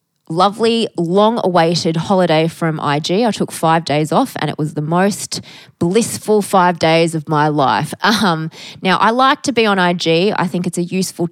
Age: 20-39